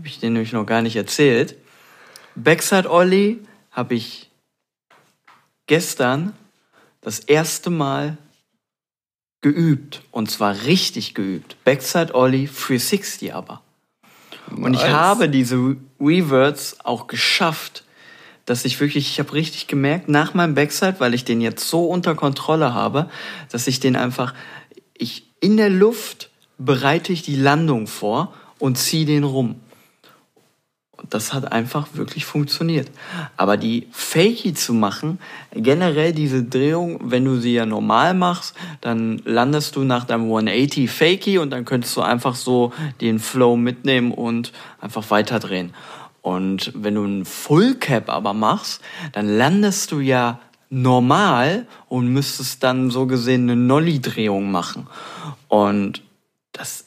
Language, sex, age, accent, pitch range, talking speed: German, male, 50-69, German, 120-160 Hz, 135 wpm